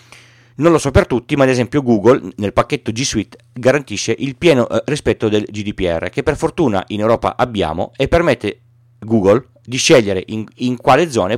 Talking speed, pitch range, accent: 180 wpm, 105-135 Hz, native